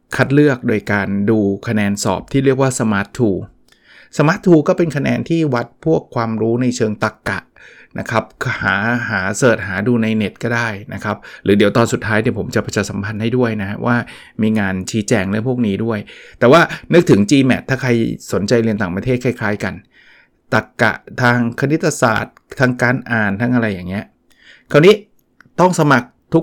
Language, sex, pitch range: Thai, male, 105-130 Hz